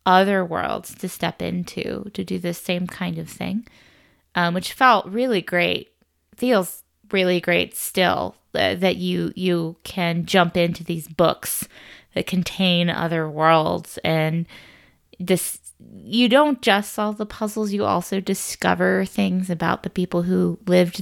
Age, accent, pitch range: 20-39, American, 165-190 Hz